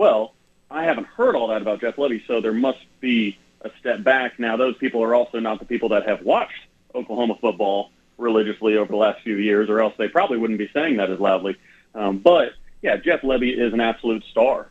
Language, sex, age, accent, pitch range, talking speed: English, male, 30-49, American, 110-145 Hz, 220 wpm